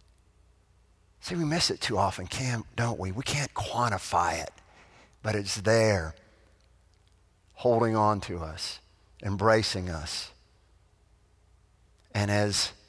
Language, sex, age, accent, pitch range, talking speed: English, male, 50-69, American, 100-160 Hz, 105 wpm